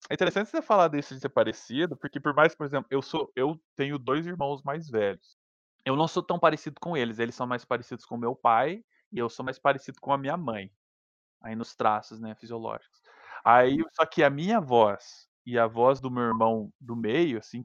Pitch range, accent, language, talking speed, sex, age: 115-150 Hz, Brazilian, Portuguese, 220 wpm, male, 20-39